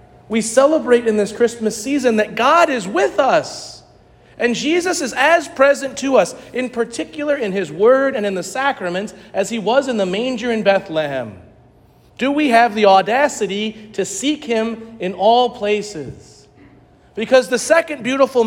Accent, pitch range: American, 195-260 Hz